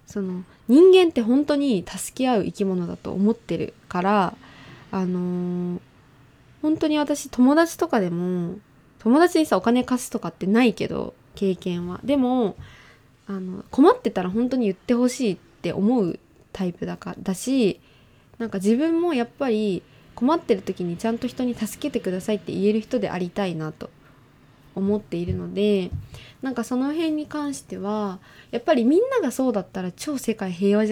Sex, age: female, 20-39